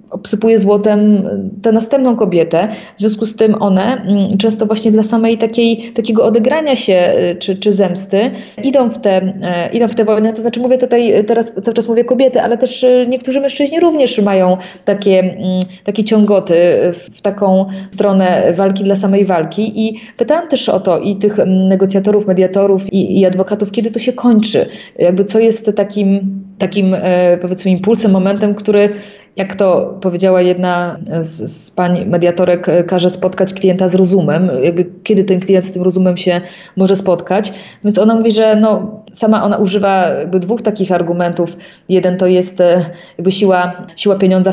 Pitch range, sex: 175-210 Hz, female